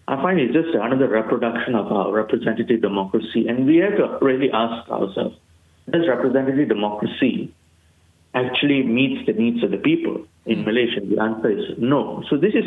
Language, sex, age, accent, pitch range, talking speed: English, male, 50-69, Indian, 110-150 Hz, 170 wpm